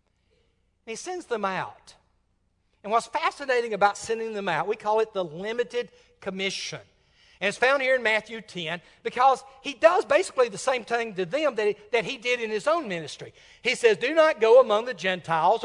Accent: American